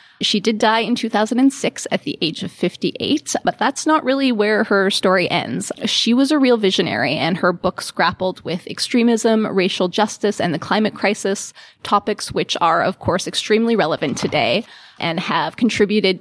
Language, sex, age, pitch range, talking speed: English, female, 20-39, 180-225 Hz, 170 wpm